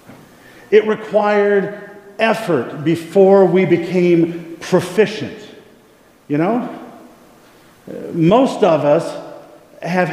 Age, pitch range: 50-69, 165-210 Hz